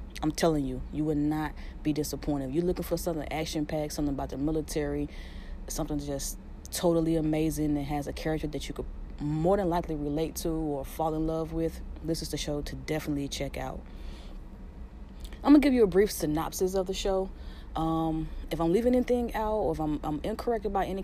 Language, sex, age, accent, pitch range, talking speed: English, female, 30-49, American, 150-170 Hz, 205 wpm